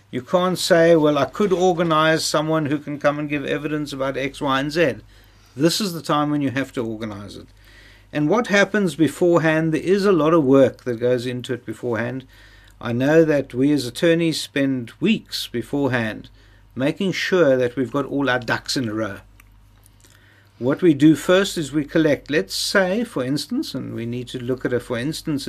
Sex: male